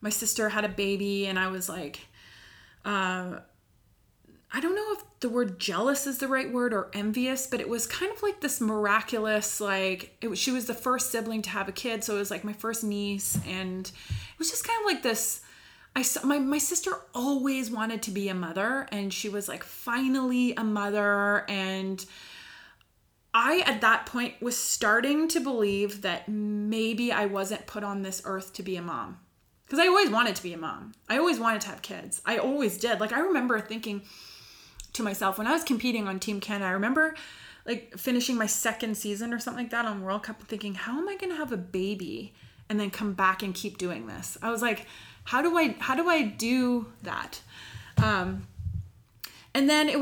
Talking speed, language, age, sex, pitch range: 210 wpm, English, 20-39, female, 200-255 Hz